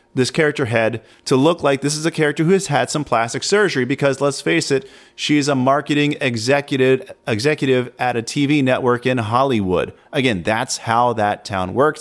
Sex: male